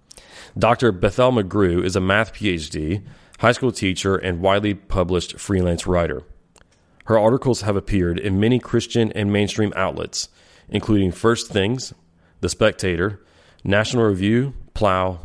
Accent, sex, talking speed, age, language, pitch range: American, male, 130 wpm, 30-49, English, 90-110 Hz